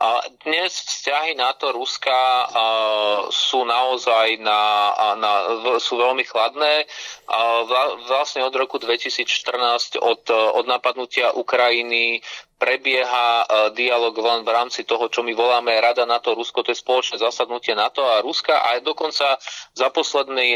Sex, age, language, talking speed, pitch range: male, 30-49, Slovak, 125 wpm, 120-145 Hz